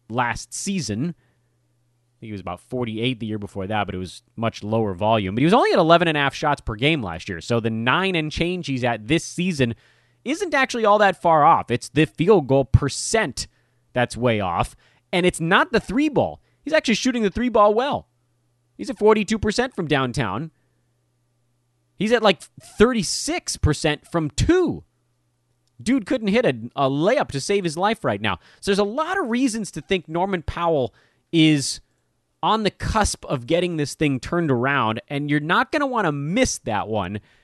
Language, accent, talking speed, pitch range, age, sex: English, American, 195 wpm, 120-190 Hz, 30-49, male